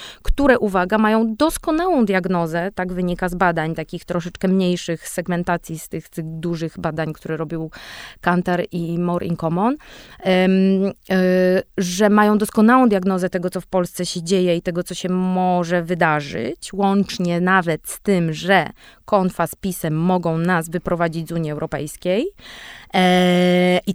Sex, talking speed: female, 150 wpm